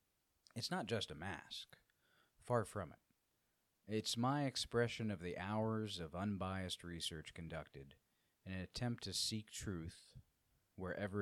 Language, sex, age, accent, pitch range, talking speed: English, male, 30-49, American, 90-110 Hz, 135 wpm